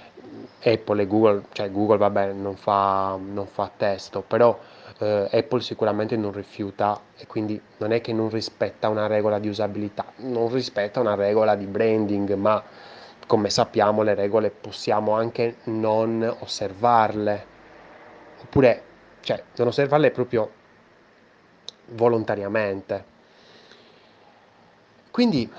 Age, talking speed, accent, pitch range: 20-39, 115 wpm, native, 105-125 Hz